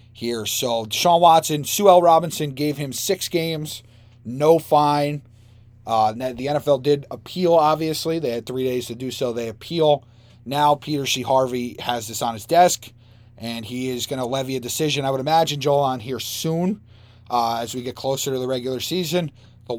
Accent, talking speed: American, 190 wpm